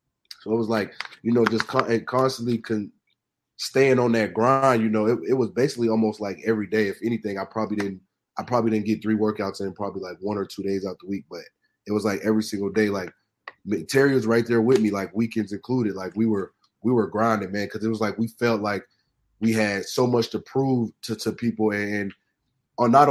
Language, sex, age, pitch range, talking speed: English, male, 20-39, 105-120 Hz, 230 wpm